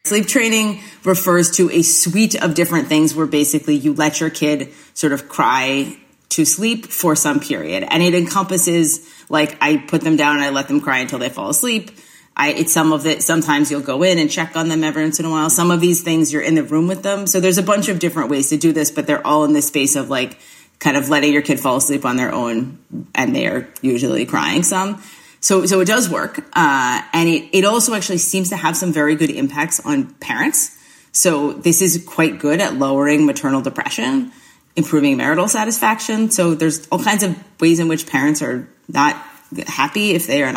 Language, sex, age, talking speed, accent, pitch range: English, female, 30-49, 220 wpm, American, 150-205 Hz